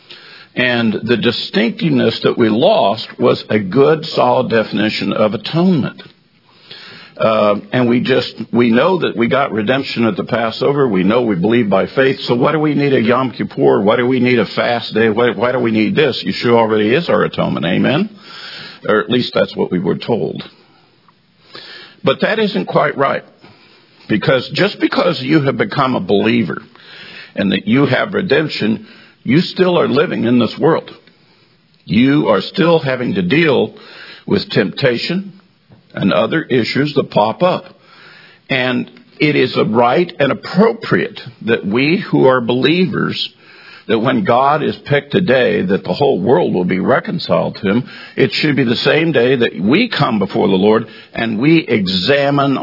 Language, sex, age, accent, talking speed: English, male, 50-69, American, 170 wpm